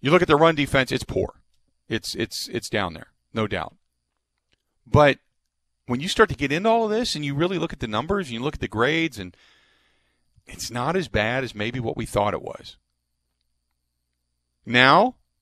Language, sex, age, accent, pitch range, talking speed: English, male, 40-59, American, 105-140 Hz, 200 wpm